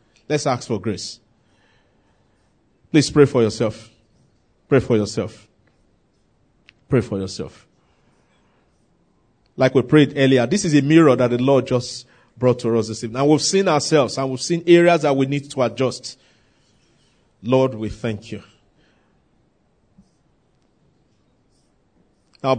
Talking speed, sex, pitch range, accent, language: 130 wpm, male, 120-150 Hz, Nigerian, English